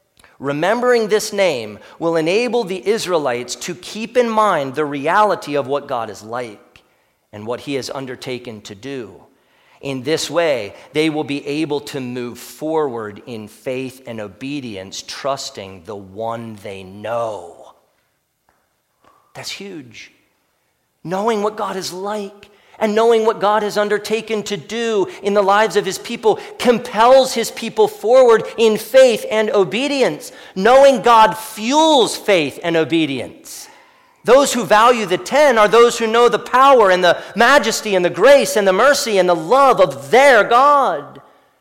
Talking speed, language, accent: 150 wpm, English, American